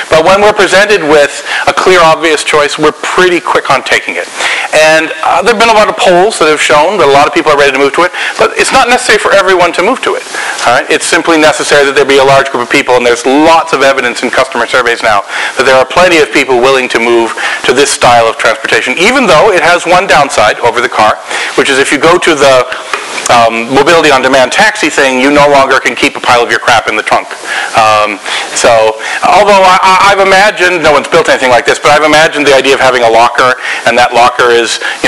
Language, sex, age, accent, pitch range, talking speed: English, male, 40-59, American, 125-175 Hz, 240 wpm